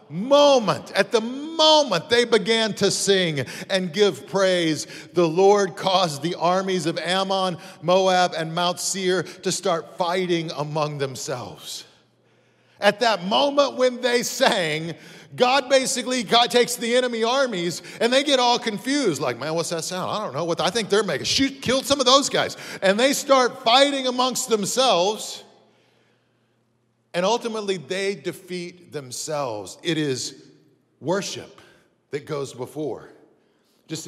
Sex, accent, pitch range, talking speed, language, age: male, American, 145-230 Hz, 145 wpm, English, 50-69